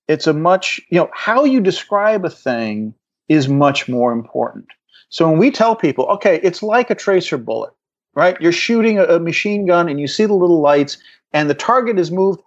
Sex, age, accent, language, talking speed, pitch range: male, 40-59, American, English, 205 wpm, 150-195 Hz